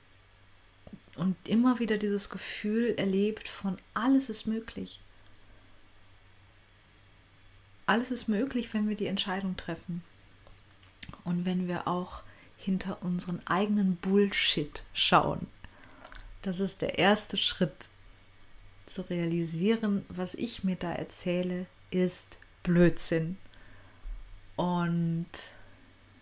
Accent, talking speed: German, 95 wpm